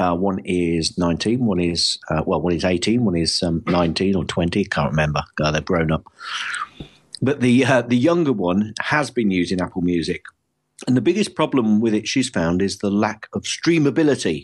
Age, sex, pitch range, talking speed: 50-69, male, 90-125 Hz, 200 wpm